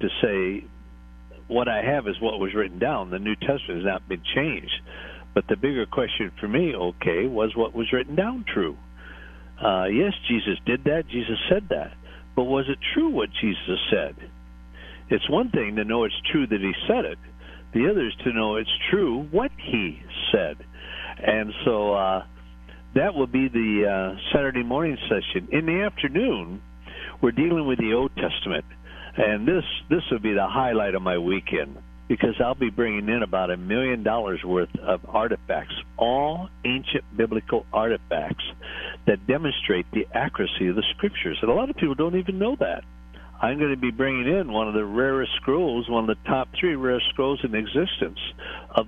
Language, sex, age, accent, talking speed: English, male, 60-79, American, 185 wpm